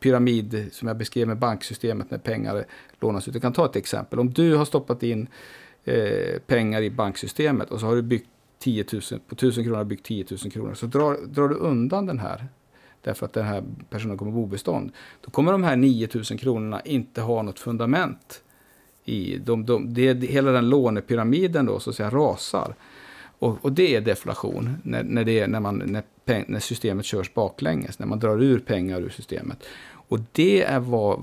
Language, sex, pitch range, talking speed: Swedish, male, 110-130 Hz, 195 wpm